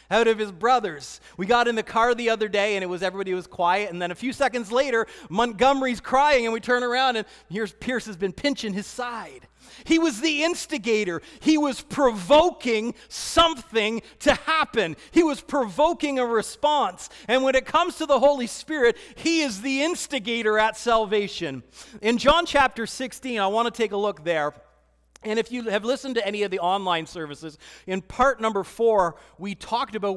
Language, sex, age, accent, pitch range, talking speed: English, male, 40-59, American, 185-245 Hz, 190 wpm